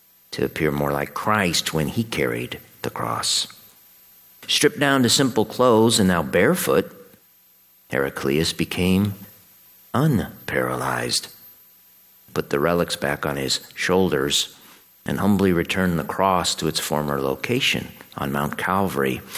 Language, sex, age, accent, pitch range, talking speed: English, male, 50-69, American, 65-105 Hz, 125 wpm